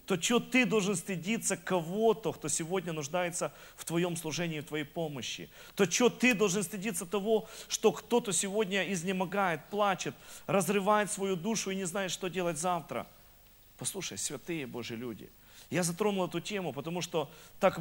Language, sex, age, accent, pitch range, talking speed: Russian, male, 40-59, native, 155-195 Hz, 155 wpm